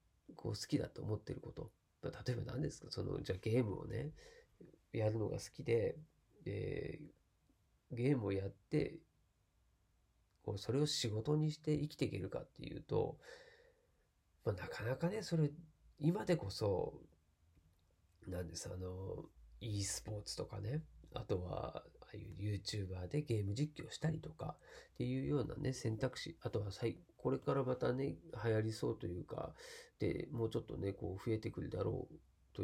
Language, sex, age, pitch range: Japanese, male, 40-59, 95-150 Hz